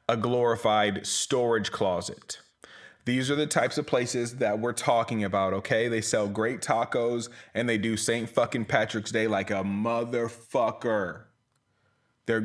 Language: English